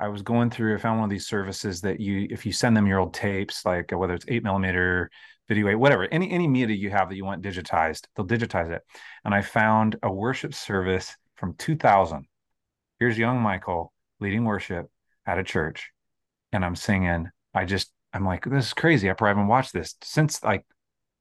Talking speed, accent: 205 wpm, American